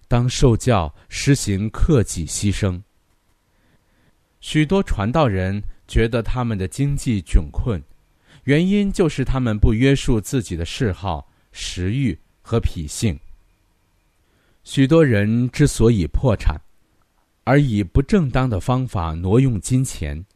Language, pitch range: Chinese, 90-130 Hz